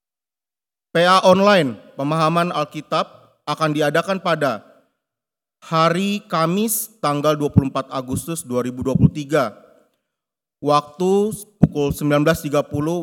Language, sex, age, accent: Indonesian, male, 30-49, native